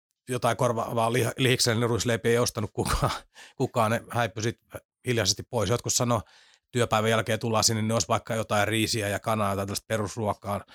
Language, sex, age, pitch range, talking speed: Finnish, male, 30-49, 100-115 Hz, 175 wpm